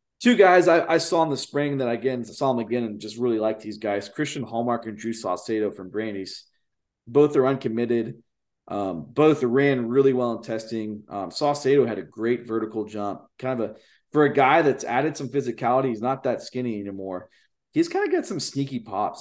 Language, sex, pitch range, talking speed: English, male, 110-135 Hz, 205 wpm